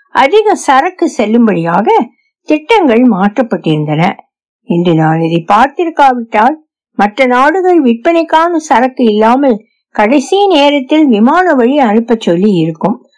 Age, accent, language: 60-79, native, Tamil